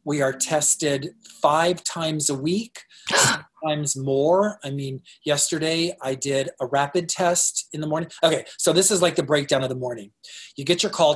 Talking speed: 185 wpm